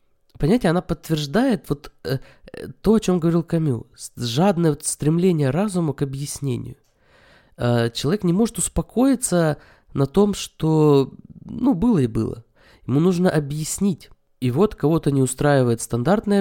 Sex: male